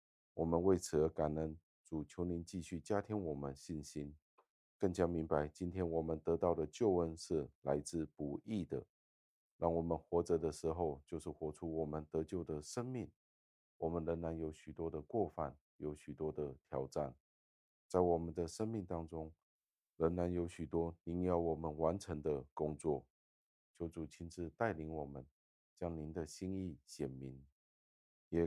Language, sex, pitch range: Chinese, male, 75-85 Hz